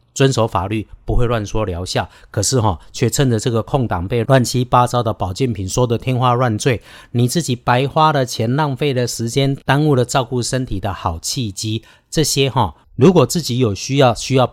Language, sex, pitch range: Chinese, male, 110-135 Hz